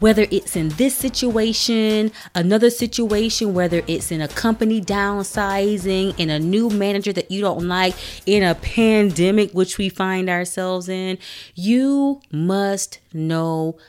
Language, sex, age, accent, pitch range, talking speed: English, female, 30-49, American, 155-205 Hz, 140 wpm